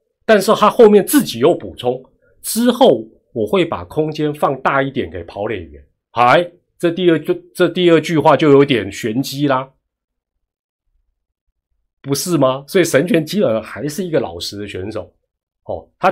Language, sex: Chinese, male